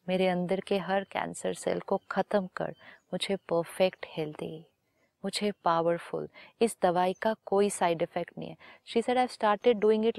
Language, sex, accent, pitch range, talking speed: Hindi, female, native, 180-225 Hz, 165 wpm